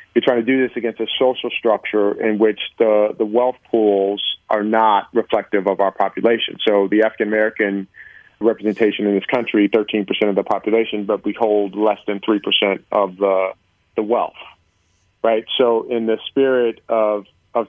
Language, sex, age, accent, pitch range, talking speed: English, male, 40-59, American, 100-115 Hz, 165 wpm